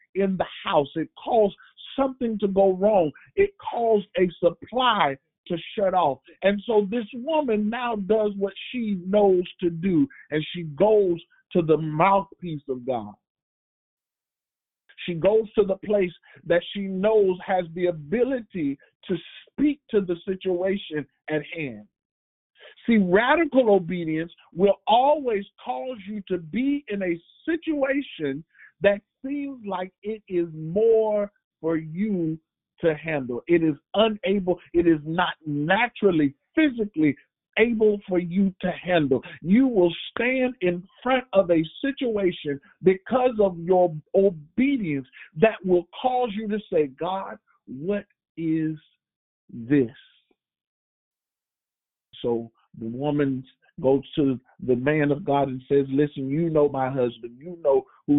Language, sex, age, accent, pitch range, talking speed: English, male, 50-69, American, 150-210 Hz, 135 wpm